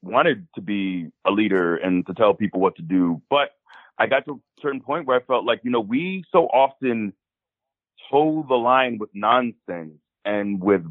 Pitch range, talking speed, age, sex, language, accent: 90-125 Hz, 195 wpm, 30-49, male, English, American